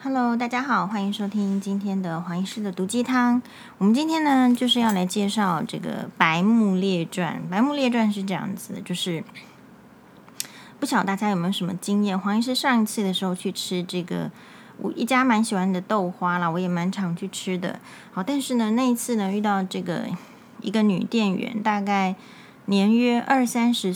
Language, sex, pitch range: Chinese, female, 190-235 Hz